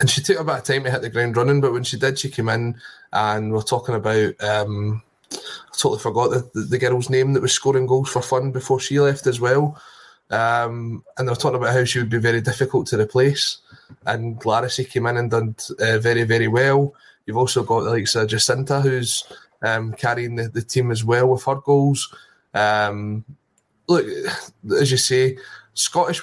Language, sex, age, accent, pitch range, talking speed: English, male, 20-39, British, 110-130 Hz, 205 wpm